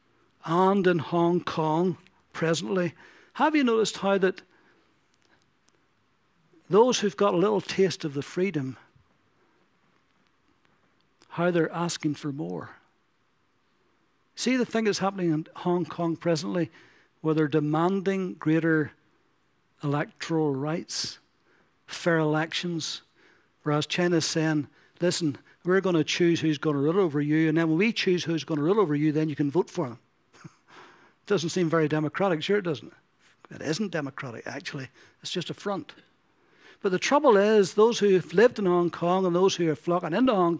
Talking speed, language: 155 wpm, English